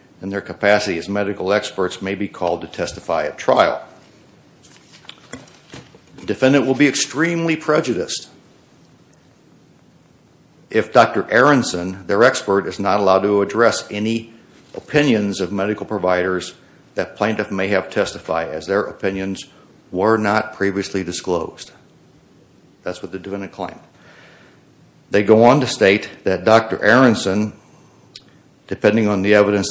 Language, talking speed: English, 125 wpm